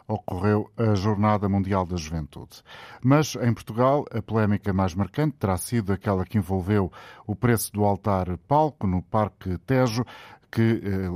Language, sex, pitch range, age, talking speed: Portuguese, male, 95-115 Hz, 50-69, 145 wpm